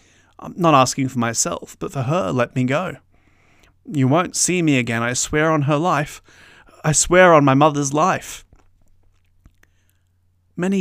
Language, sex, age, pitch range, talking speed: English, male, 30-49, 100-145 Hz, 155 wpm